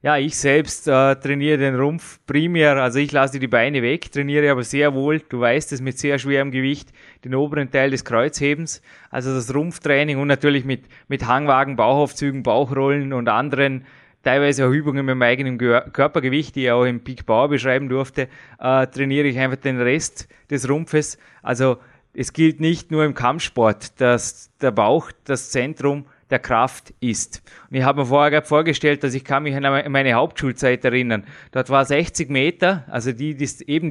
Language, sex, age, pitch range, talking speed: German, male, 20-39, 130-150 Hz, 180 wpm